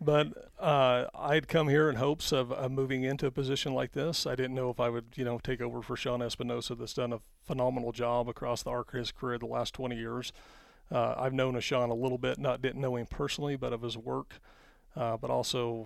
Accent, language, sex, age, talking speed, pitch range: American, English, male, 40-59, 240 wpm, 115-130 Hz